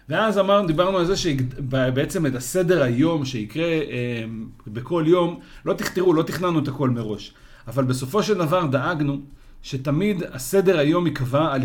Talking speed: 155 wpm